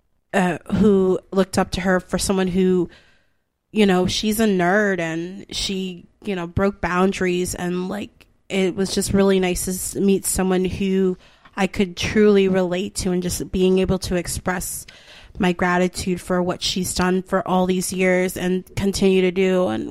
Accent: American